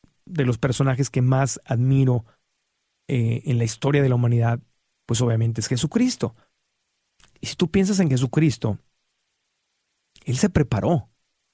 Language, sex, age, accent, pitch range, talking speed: Spanish, male, 40-59, Mexican, 125-145 Hz, 135 wpm